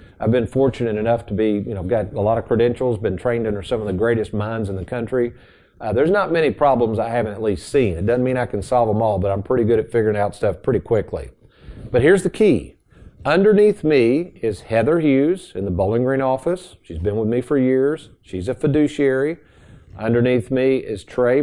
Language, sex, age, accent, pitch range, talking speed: English, male, 50-69, American, 110-145 Hz, 220 wpm